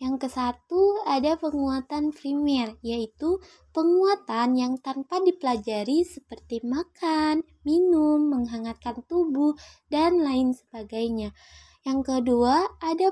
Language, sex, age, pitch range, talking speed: Malay, female, 20-39, 240-315 Hz, 95 wpm